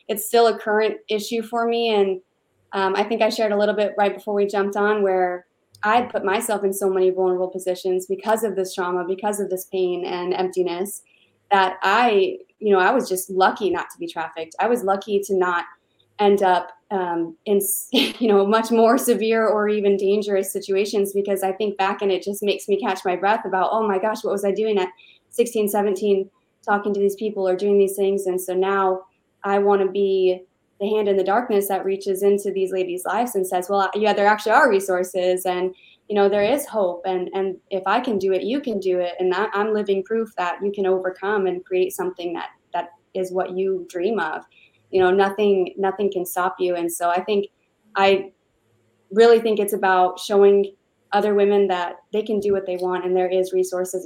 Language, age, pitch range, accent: English, 20-39, 185-205 Hz, American